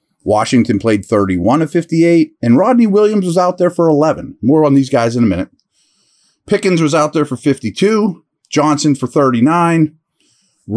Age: 30-49